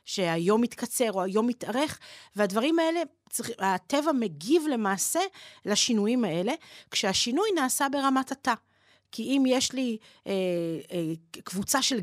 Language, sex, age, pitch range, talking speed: Hebrew, female, 40-59, 185-245 Hz, 120 wpm